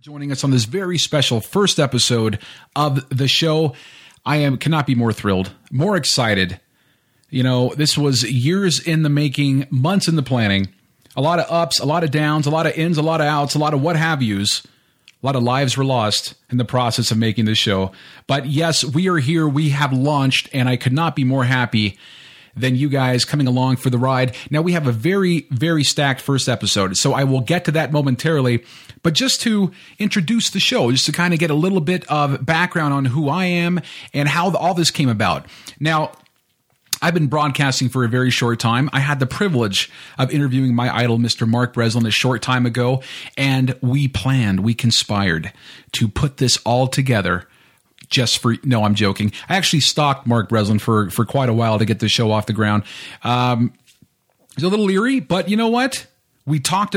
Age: 30-49